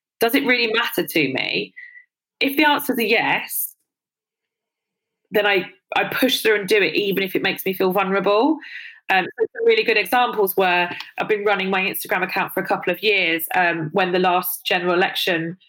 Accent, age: British, 20-39